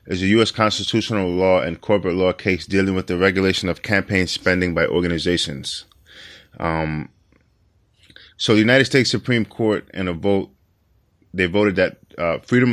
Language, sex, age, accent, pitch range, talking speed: English, male, 20-39, American, 90-105 Hz, 155 wpm